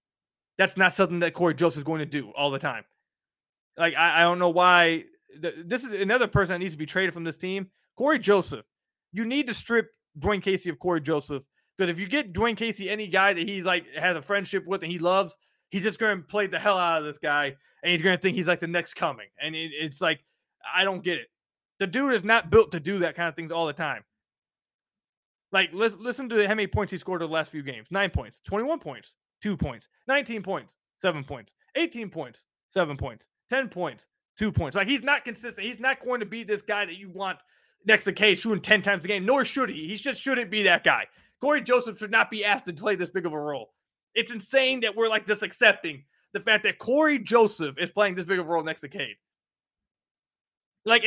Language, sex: English, male